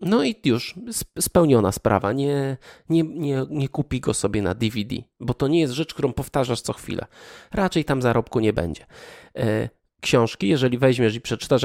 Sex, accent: male, native